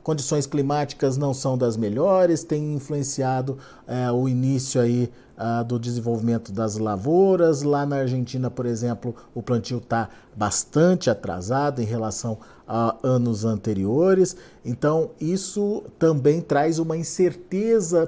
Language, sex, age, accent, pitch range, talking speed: Portuguese, male, 50-69, Brazilian, 130-165 Hz, 120 wpm